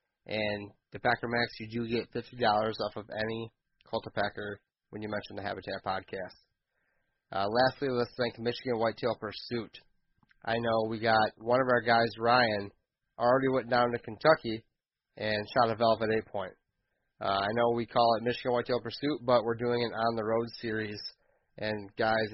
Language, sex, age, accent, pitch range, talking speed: English, male, 20-39, American, 110-125 Hz, 160 wpm